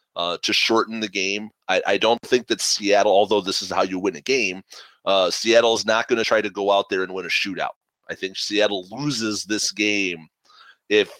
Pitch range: 95-115 Hz